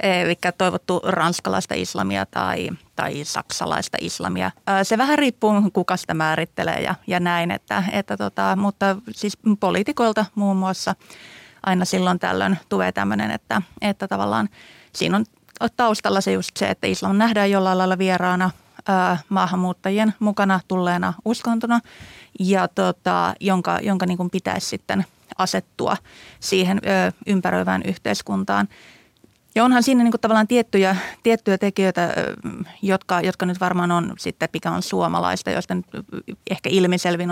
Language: Finnish